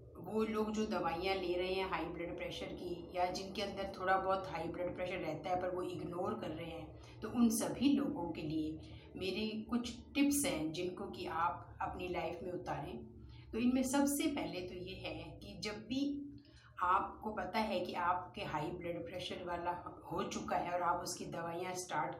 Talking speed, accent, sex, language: 190 wpm, native, female, Hindi